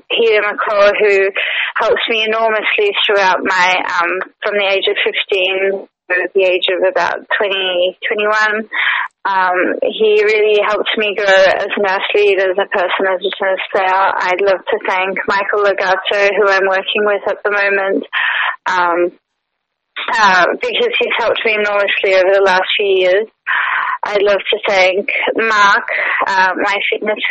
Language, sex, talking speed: English, female, 155 wpm